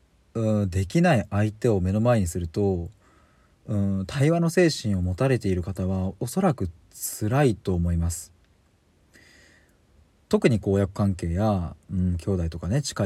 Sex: male